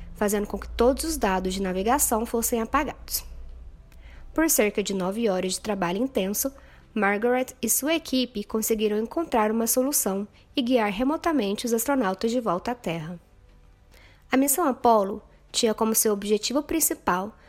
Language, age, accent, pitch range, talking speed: Portuguese, 20-39, Brazilian, 195-255 Hz, 150 wpm